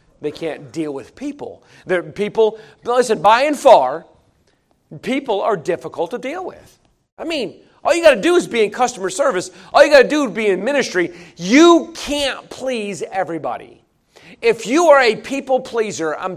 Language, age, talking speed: English, 40-59, 175 wpm